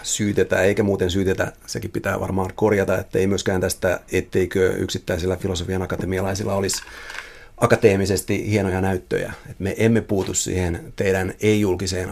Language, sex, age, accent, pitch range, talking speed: Finnish, male, 30-49, native, 95-110 Hz, 130 wpm